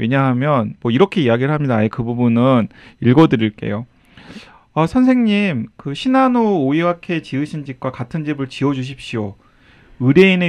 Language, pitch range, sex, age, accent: Korean, 115-165 Hz, male, 30-49, native